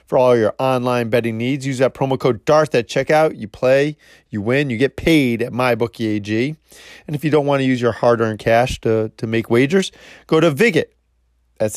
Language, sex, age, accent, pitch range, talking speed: English, male, 30-49, American, 110-140 Hz, 210 wpm